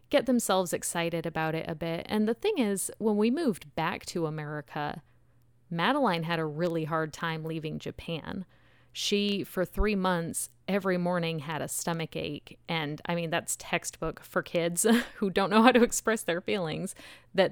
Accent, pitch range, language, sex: American, 155-195 Hz, English, female